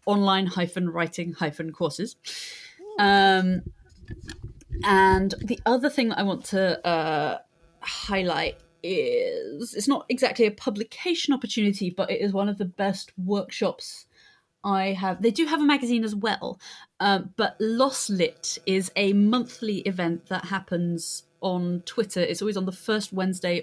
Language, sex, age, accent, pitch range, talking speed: English, female, 30-49, British, 175-215 Hz, 140 wpm